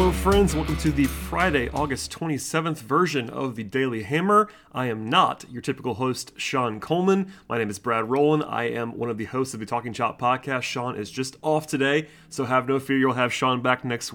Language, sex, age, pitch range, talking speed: English, male, 30-49, 120-145 Hz, 215 wpm